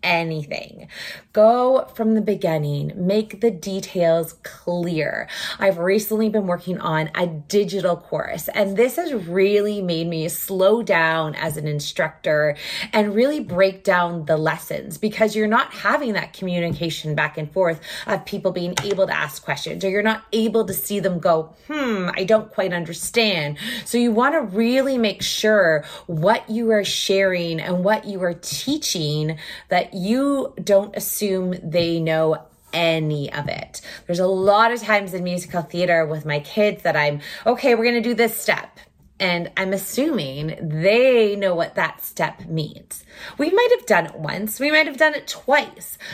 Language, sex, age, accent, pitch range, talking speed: English, female, 30-49, American, 165-220 Hz, 170 wpm